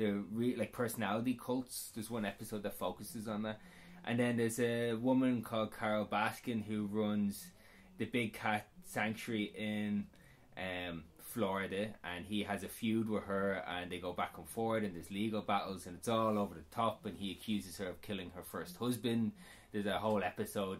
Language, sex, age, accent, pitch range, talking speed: English, male, 20-39, Irish, 100-120 Hz, 190 wpm